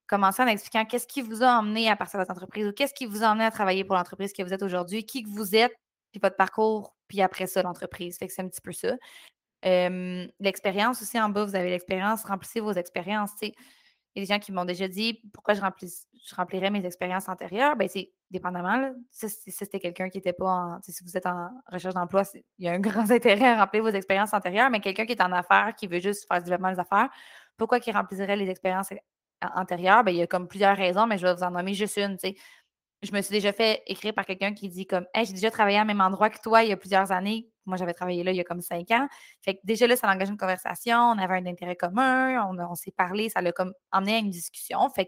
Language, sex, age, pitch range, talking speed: French, female, 20-39, 185-220 Hz, 265 wpm